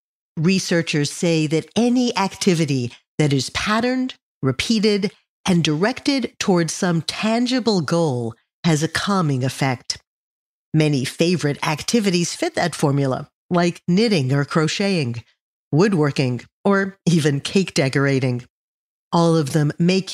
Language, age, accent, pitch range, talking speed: English, 50-69, American, 150-200 Hz, 115 wpm